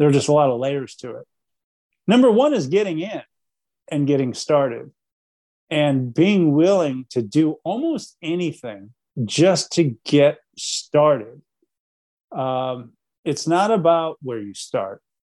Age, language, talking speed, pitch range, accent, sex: 40-59, English, 135 wpm, 135-170 Hz, American, male